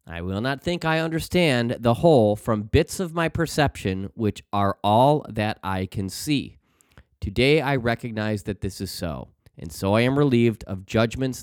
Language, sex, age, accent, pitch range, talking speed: English, male, 30-49, American, 95-125 Hz, 180 wpm